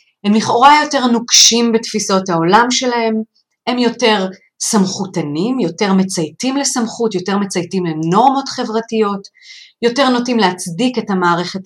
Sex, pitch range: female, 180-255 Hz